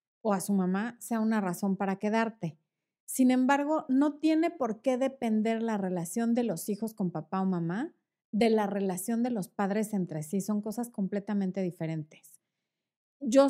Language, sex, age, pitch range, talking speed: Spanish, female, 30-49, 195-255 Hz, 170 wpm